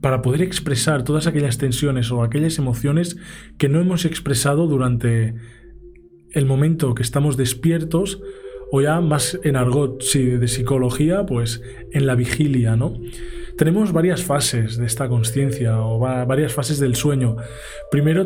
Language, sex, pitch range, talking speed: Spanish, male, 125-165 Hz, 150 wpm